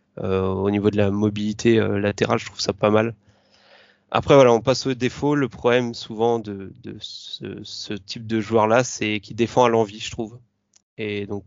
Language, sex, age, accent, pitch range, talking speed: French, male, 20-39, French, 105-120 Hz, 205 wpm